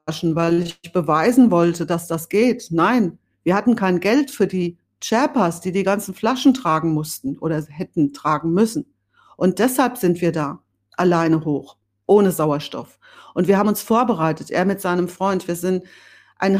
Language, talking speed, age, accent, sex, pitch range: German, 165 wpm, 40-59, German, female, 155-205 Hz